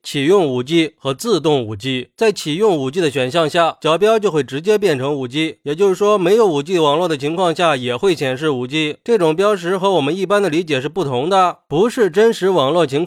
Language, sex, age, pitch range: Chinese, male, 20-39, 150-205 Hz